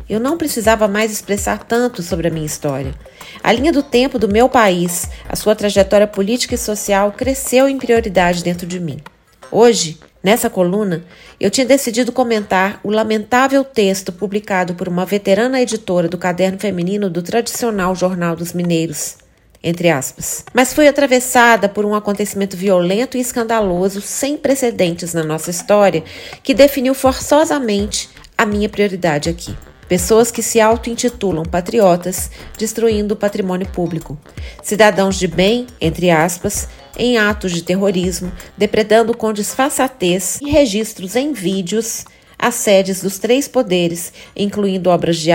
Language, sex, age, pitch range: Portuguese, female, 40-59, 180-235 Hz